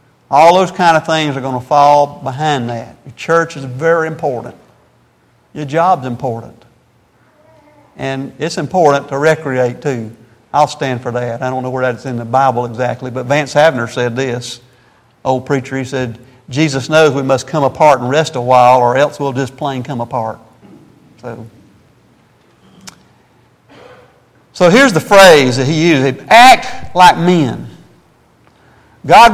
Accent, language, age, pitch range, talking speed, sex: American, English, 50-69, 130-170 Hz, 160 wpm, male